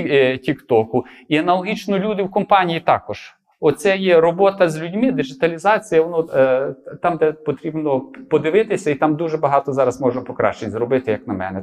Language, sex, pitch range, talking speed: Ukrainian, male, 140-185 Hz, 155 wpm